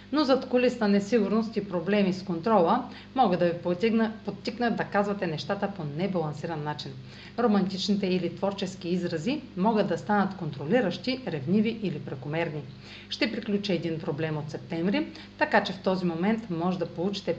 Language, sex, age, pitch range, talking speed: Bulgarian, female, 40-59, 170-225 Hz, 150 wpm